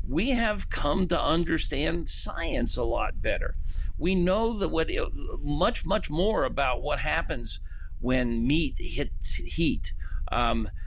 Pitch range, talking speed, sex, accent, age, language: 120-180 Hz, 140 wpm, male, American, 50-69, English